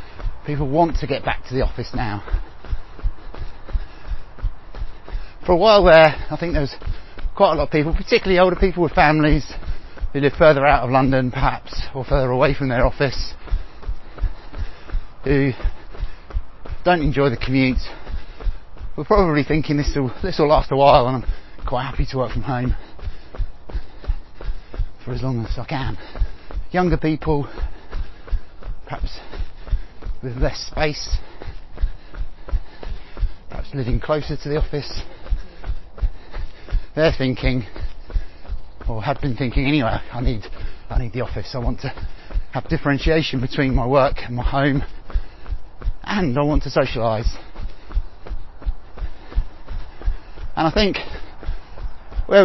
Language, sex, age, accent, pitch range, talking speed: English, male, 30-49, British, 100-150 Hz, 130 wpm